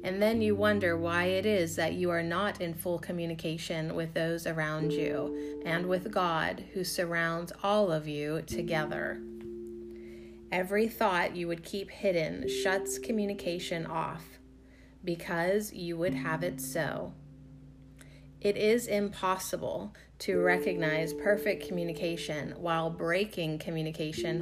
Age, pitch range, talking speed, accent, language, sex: 30-49, 145-190 Hz, 130 wpm, American, English, female